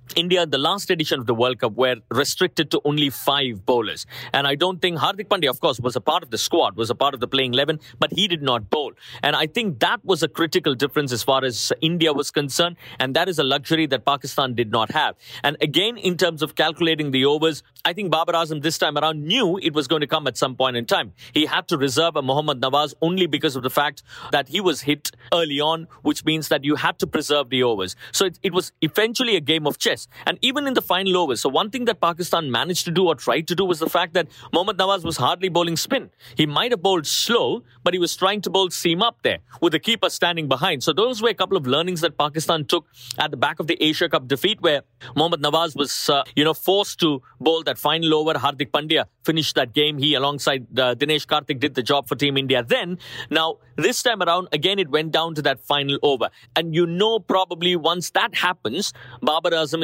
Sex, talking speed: male, 240 wpm